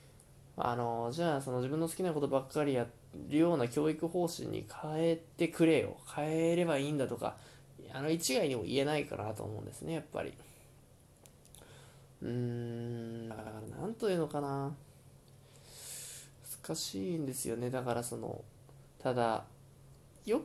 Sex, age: male, 20-39